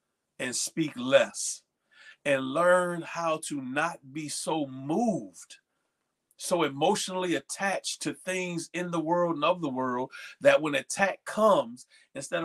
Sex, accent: male, American